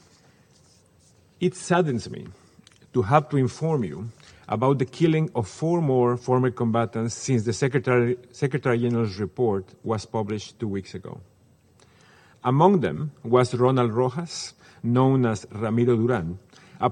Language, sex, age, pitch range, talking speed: English, male, 50-69, 115-145 Hz, 130 wpm